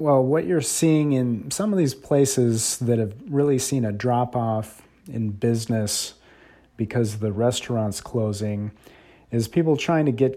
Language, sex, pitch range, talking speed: English, male, 110-130 Hz, 155 wpm